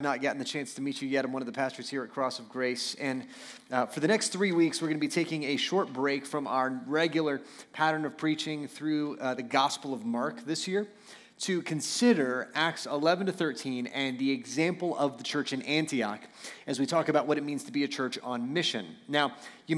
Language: English